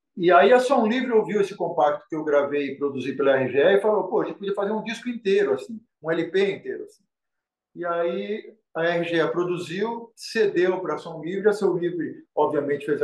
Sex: male